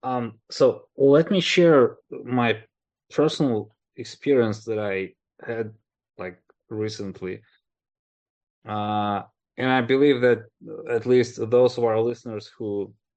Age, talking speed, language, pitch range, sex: 20-39, 115 wpm, Russian, 95-115 Hz, male